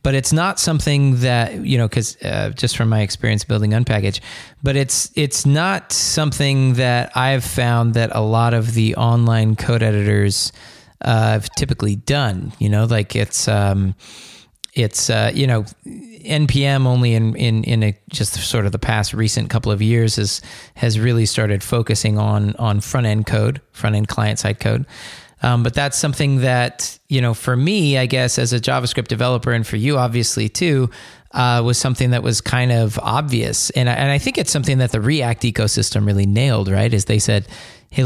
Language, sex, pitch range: English, male, 110-130 Hz